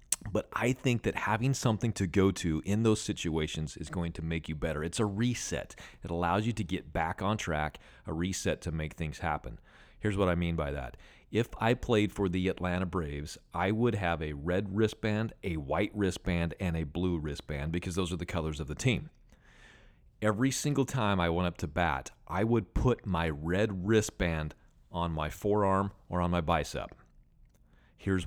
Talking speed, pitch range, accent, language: 195 wpm, 80-105 Hz, American, English